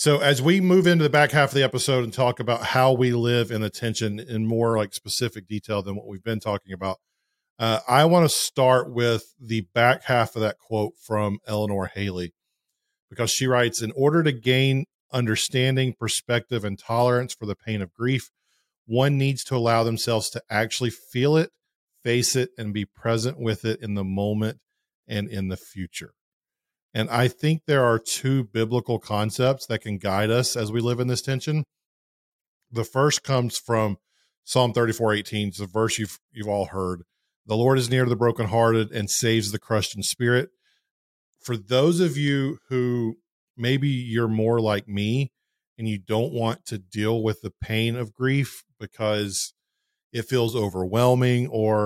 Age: 40-59